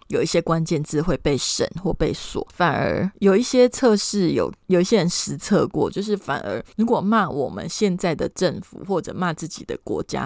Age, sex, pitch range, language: 20-39, female, 170-220 Hz, Chinese